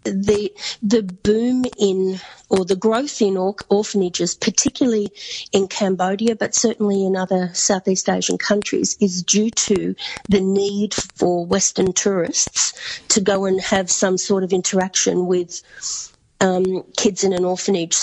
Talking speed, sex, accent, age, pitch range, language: 140 wpm, female, Australian, 40-59, 185-220 Hz, English